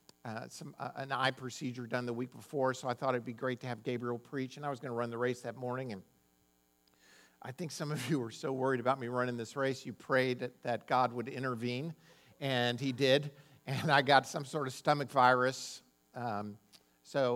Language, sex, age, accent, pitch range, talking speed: English, male, 50-69, American, 120-150 Hz, 220 wpm